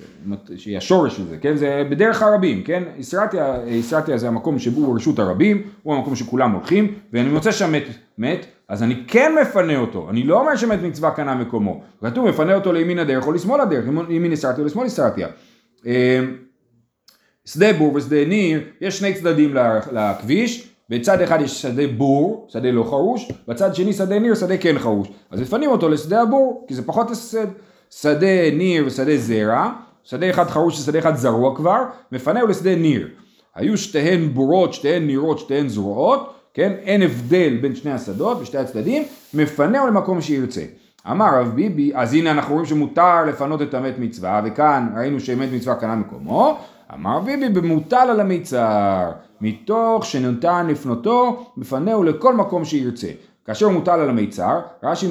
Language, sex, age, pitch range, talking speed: Hebrew, male, 30-49, 130-195 Hz, 155 wpm